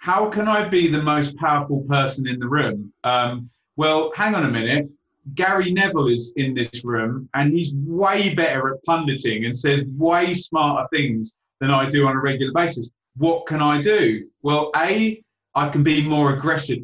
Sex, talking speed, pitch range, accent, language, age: male, 185 wpm, 125-160 Hz, British, English, 30-49